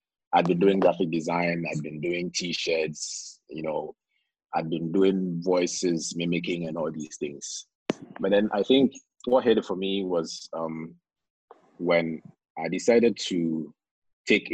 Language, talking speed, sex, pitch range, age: English, 145 wpm, male, 85-100 Hz, 30-49